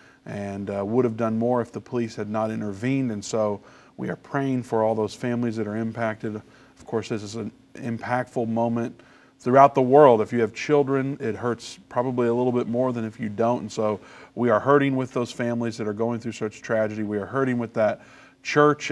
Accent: American